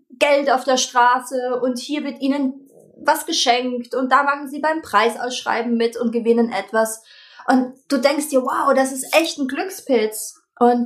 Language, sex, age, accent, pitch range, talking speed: German, female, 20-39, German, 230-290 Hz, 170 wpm